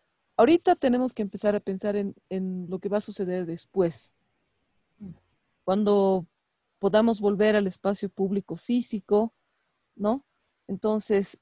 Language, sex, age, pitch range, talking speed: Spanish, female, 40-59, 185-210 Hz, 120 wpm